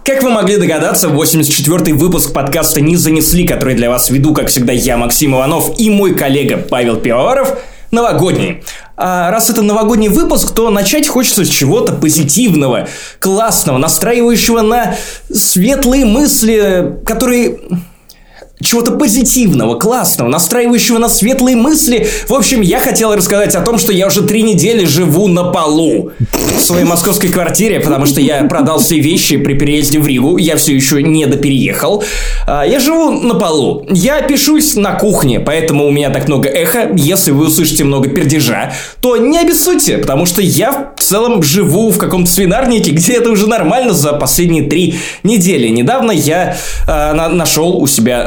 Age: 20-39